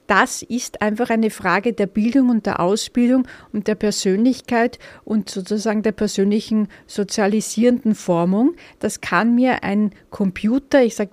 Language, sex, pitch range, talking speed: German, female, 200-230 Hz, 140 wpm